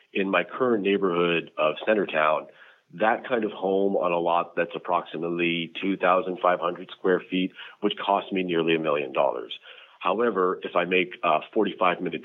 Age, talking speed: 30-49, 150 wpm